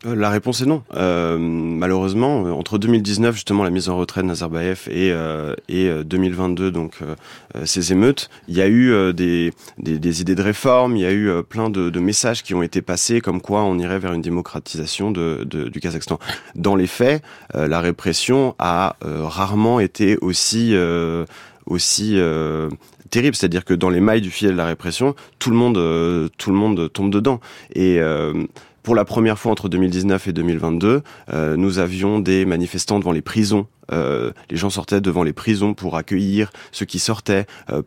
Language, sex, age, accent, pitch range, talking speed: French, male, 30-49, French, 85-100 Hz, 195 wpm